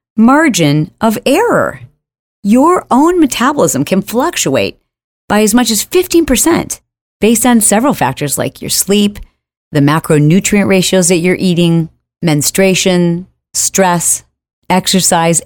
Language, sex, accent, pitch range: English, female, American, 150-205 Hz